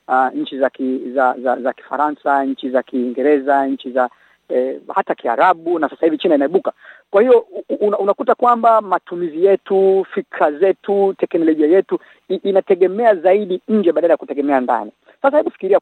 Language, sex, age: Swahili, female, 40-59